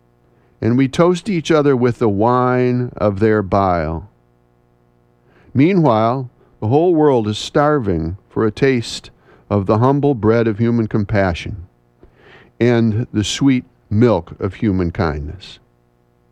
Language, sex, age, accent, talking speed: English, male, 50-69, American, 125 wpm